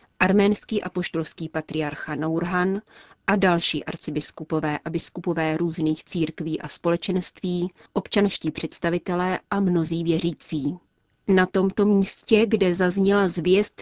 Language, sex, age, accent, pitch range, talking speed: Czech, female, 30-49, native, 165-195 Hz, 105 wpm